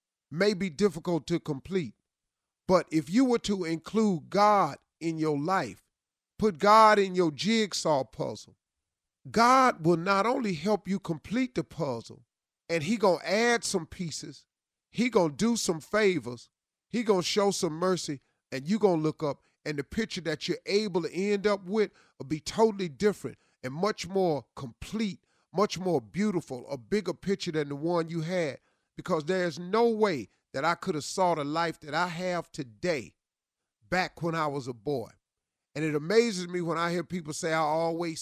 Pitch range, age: 140-190 Hz, 40-59